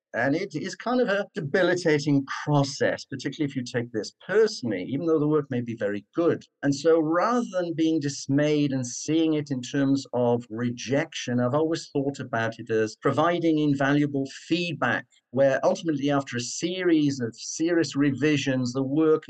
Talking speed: 170 wpm